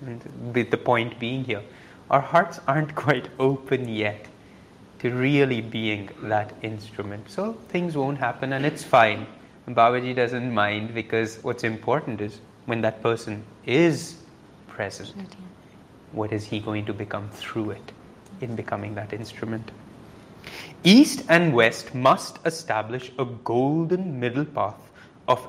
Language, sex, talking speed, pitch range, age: English, male, 135 wpm, 110-145 Hz, 30-49